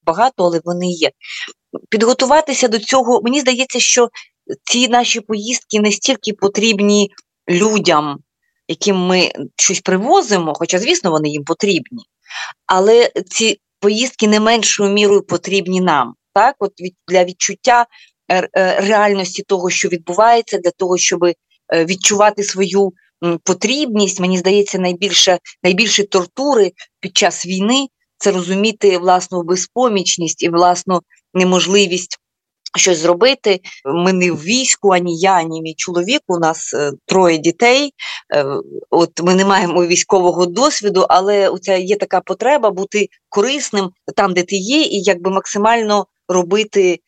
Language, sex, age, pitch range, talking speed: Ukrainian, female, 30-49, 175-215 Hz, 125 wpm